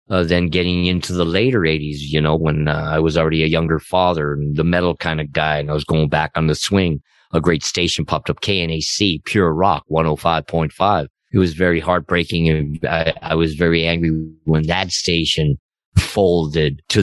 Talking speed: 210 wpm